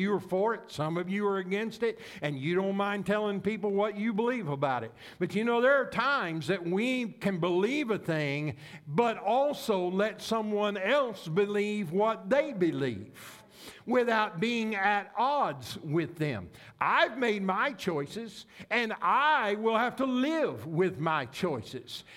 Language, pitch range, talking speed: English, 185-240 Hz, 165 wpm